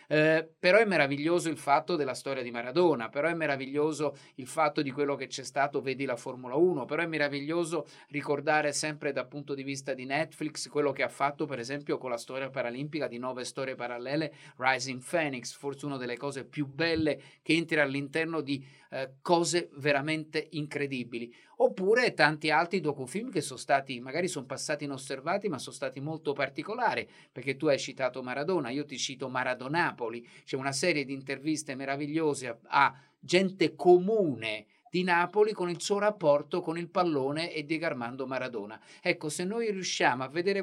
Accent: native